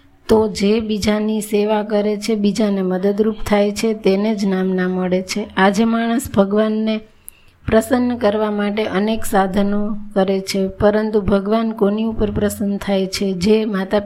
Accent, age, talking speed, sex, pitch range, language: native, 30-49, 100 wpm, female, 195-220 Hz, Gujarati